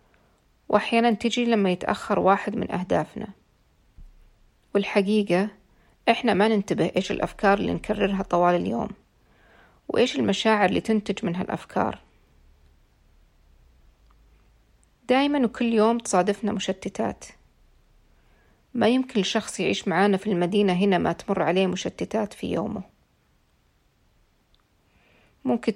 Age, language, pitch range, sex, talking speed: 40-59, Arabic, 185-220 Hz, female, 100 wpm